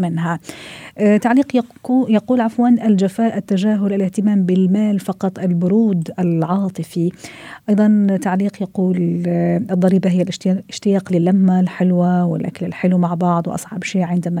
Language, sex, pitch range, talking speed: Arabic, female, 175-215 Hz, 115 wpm